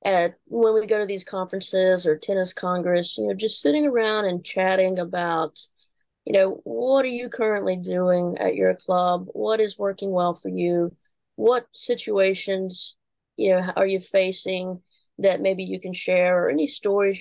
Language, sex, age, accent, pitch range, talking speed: English, female, 20-39, American, 180-220 Hz, 170 wpm